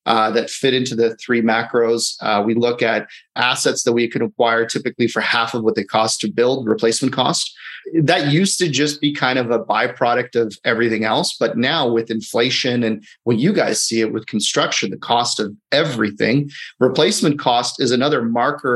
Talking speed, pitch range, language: 190 wpm, 115-130 Hz, English